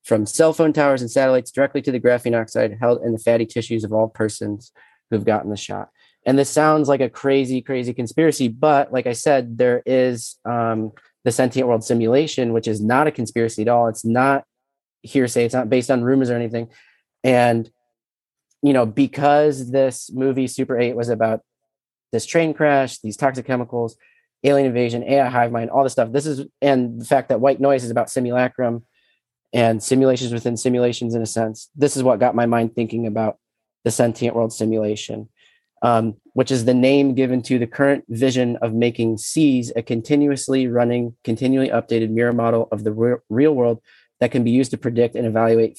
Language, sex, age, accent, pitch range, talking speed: English, male, 30-49, American, 115-135 Hz, 190 wpm